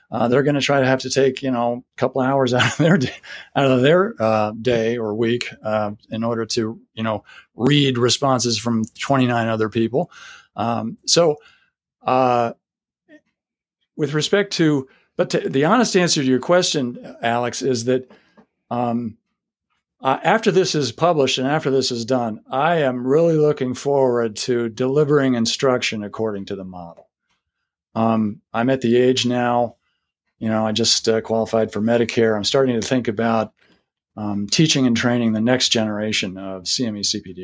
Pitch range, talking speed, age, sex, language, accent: 115-145 Hz, 170 wpm, 50-69, male, English, American